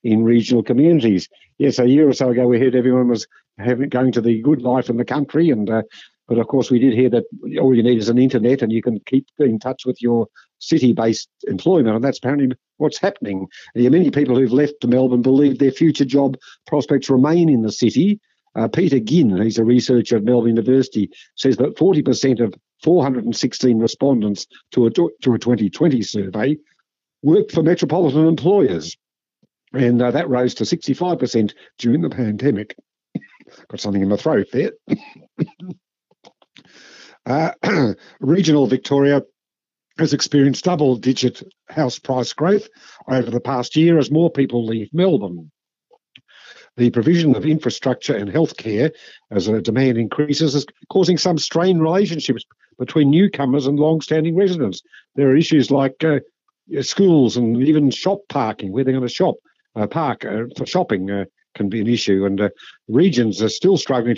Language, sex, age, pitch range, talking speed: English, male, 60-79, 115-150 Hz, 165 wpm